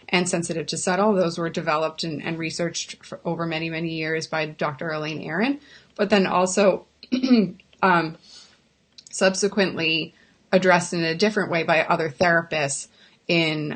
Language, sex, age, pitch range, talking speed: English, female, 30-49, 170-200 Hz, 140 wpm